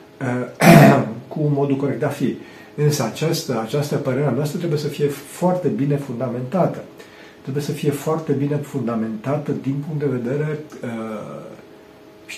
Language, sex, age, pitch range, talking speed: Romanian, male, 40-59, 125-160 Hz, 135 wpm